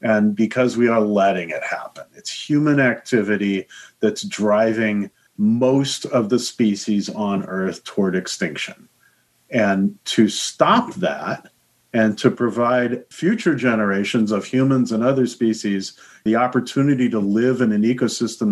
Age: 40-59